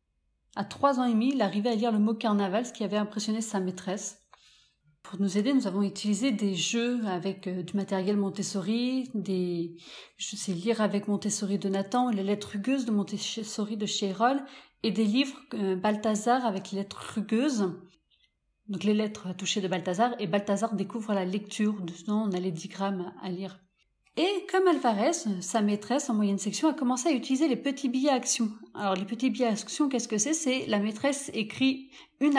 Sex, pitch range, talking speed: female, 195-250 Hz, 190 wpm